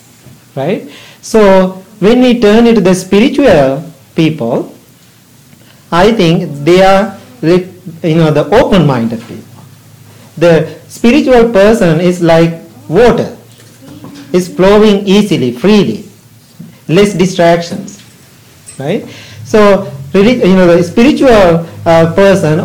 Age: 50-69